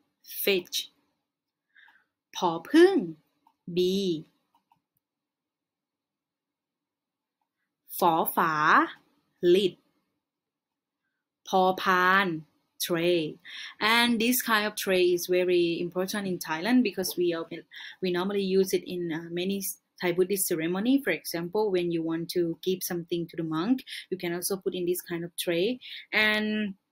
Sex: female